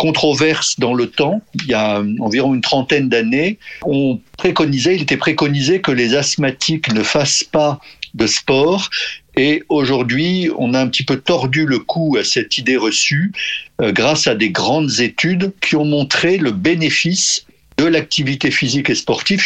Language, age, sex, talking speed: French, 50-69, male, 165 wpm